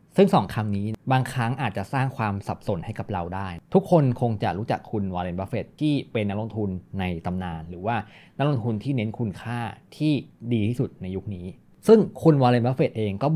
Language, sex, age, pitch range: Thai, male, 20-39, 105-145 Hz